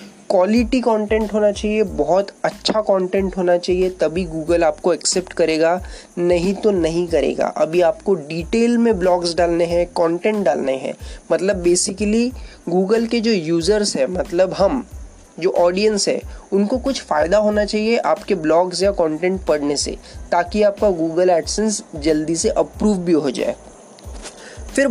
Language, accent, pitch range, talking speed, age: Hindi, native, 175-215 Hz, 150 wpm, 20-39